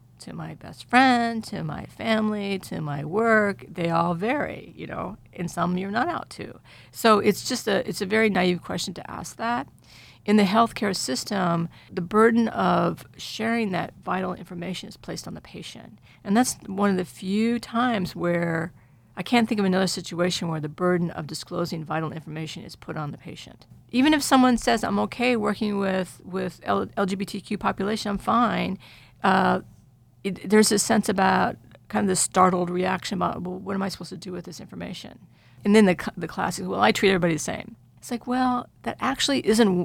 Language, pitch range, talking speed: English, 175-215 Hz, 195 wpm